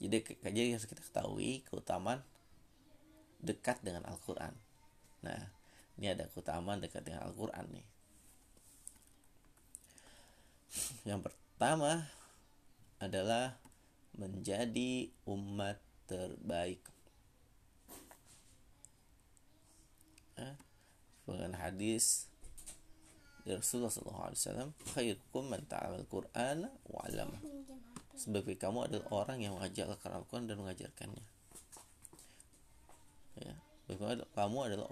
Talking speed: 80 wpm